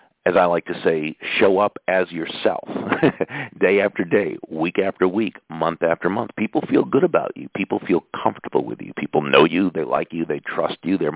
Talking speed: 205 wpm